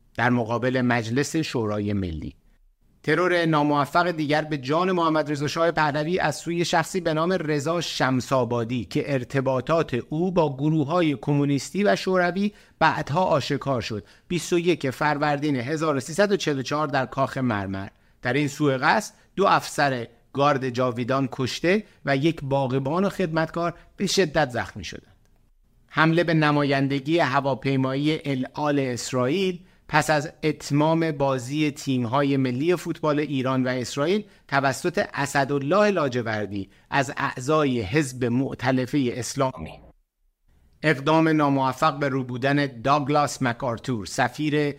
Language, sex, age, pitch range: Persian, male, 50-69, 125-155 Hz